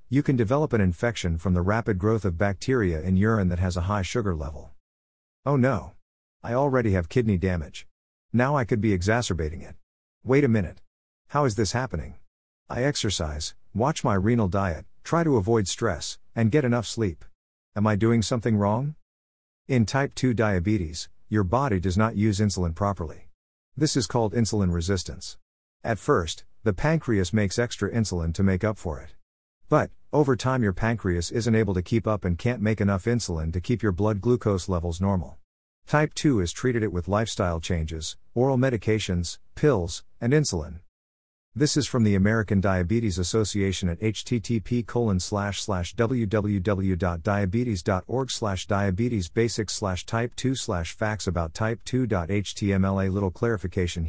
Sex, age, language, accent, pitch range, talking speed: male, 50-69, English, American, 90-115 Hz, 160 wpm